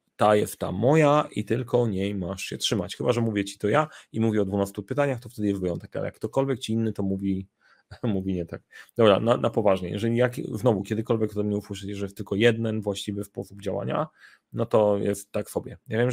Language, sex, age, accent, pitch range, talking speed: Polish, male, 30-49, native, 100-120 Hz, 220 wpm